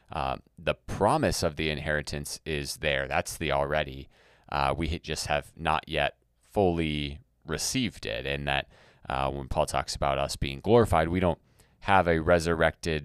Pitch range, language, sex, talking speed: 70-85 Hz, English, male, 160 wpm